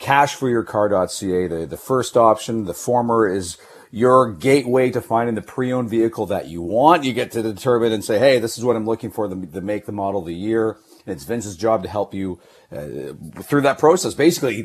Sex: male